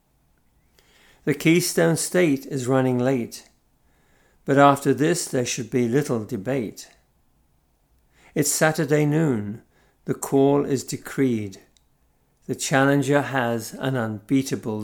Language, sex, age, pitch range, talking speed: English, male, 60-79, 105-160 Hz, 105 wpm